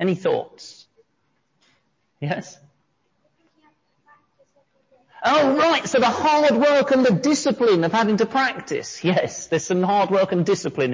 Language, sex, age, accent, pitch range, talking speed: English, male, 40-59, British, 185-275 Hz, 125 wpm